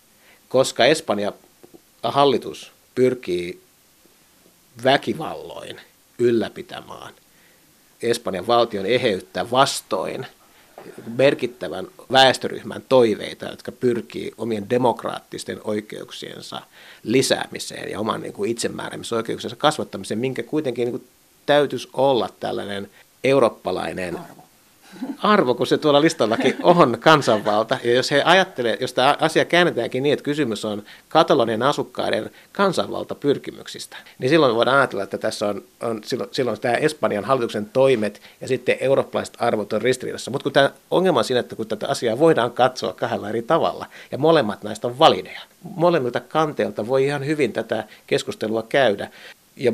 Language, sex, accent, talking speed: Finnish, male, native, 120 wpm